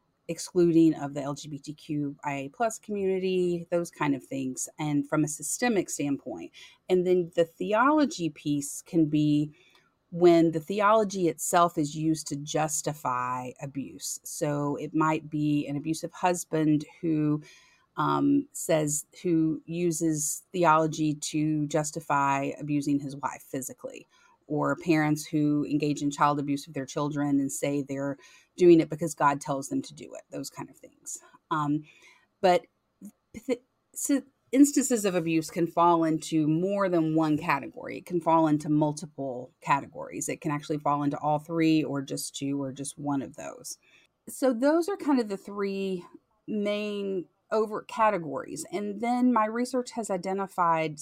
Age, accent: 30-49, American